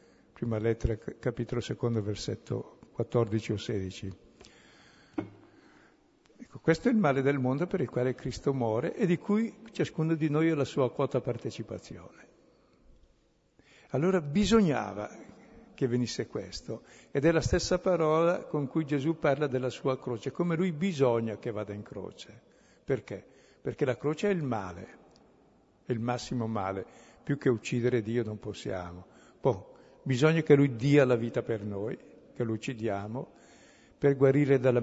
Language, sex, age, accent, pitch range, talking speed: Italian, male, 60-79, native, 115-140 Hz, 150 wpm